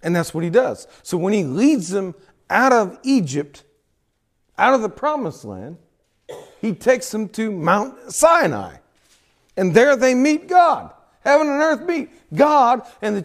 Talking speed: 165 wpm